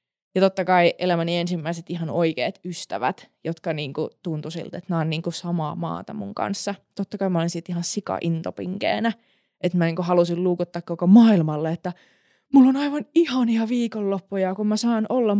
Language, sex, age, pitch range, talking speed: Finnish, female, 20-39, 170-210 Hz, 175 wpm